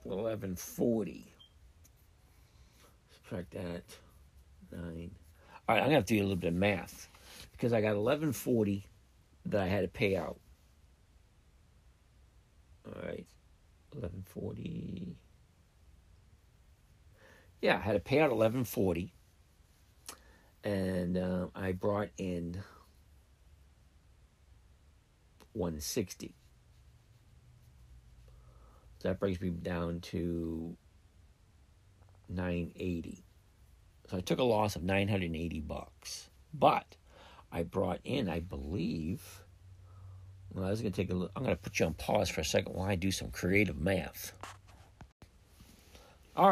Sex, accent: male, American